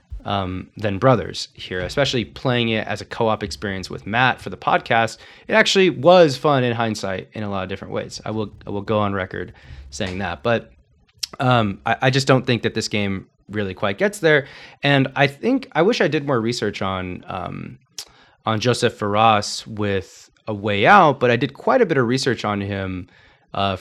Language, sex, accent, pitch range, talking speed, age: English, male, American, 100-130 Hz, 200 wpm, 20-39